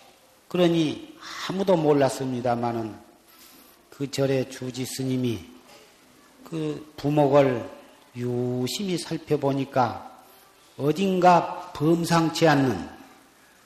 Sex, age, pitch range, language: male, 40-59, 115-150 Hz, Korean